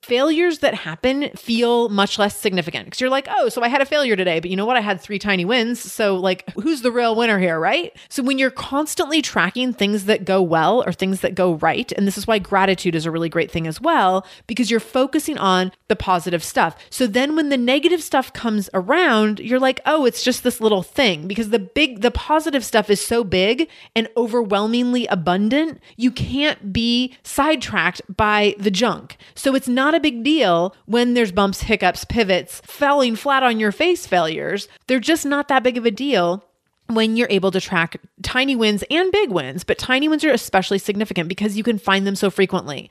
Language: English